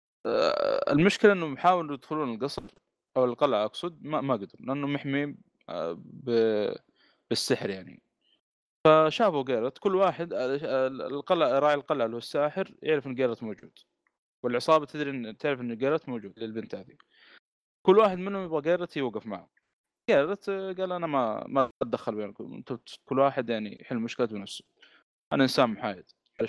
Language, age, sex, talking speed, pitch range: Arabic, 20-39, male, 140 wpm, 125-175 Hz